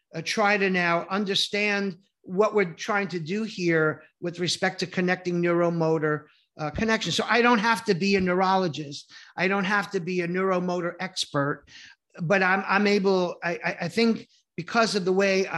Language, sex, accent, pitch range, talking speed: English, male, American, 170-210 Hz, 175 wpm